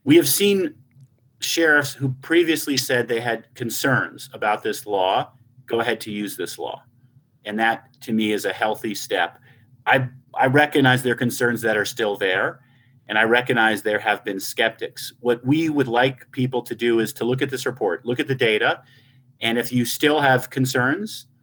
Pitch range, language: 120-135 Hz, English